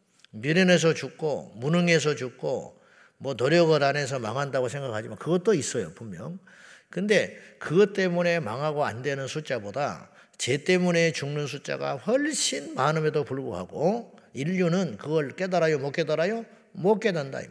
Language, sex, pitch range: Korean, male, 135-175 Hz